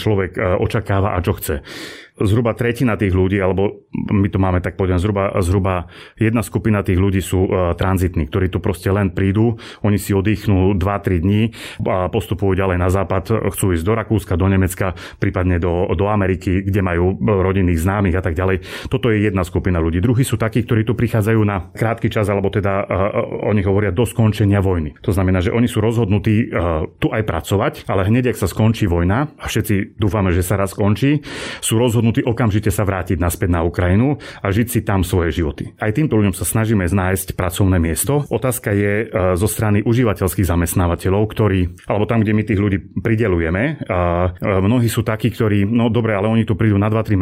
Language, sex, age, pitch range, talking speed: Slovak, male, 30-49, 95-115 Hz, 185 wpm